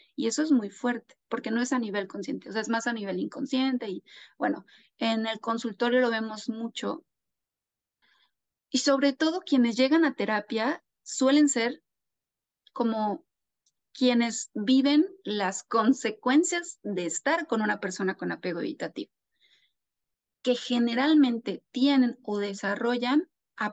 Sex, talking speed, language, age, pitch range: female, 135 wpm, Spanish, 30-49, 210-270 Hz